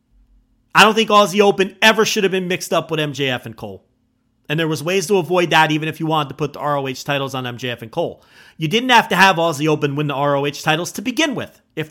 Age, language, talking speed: 40-59, English, 250 wpm